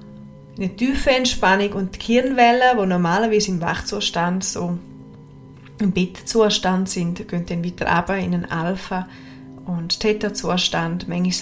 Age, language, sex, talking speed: 20-39, German, female, 125 wpm